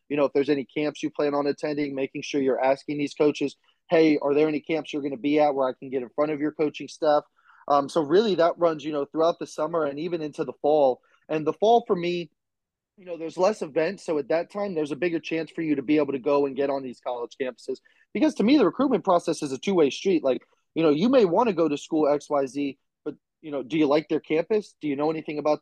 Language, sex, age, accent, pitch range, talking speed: English, male, 20-39, American, 145-170 Hz, 280 wpm